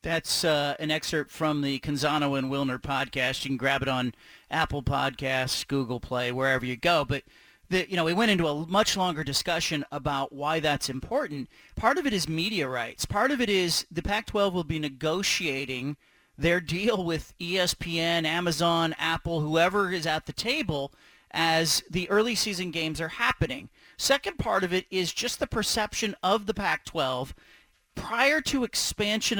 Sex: male